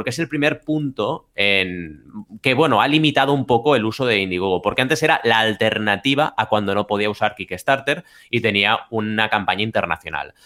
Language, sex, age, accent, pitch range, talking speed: Spanish, male, 30-49, Spanish, 105-135 Hz, 185 wpm